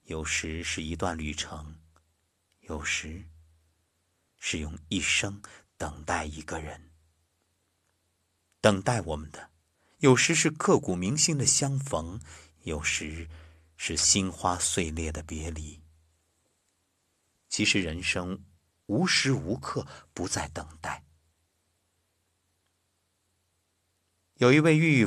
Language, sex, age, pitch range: Chinese, male, 50-69, 80-100 Hz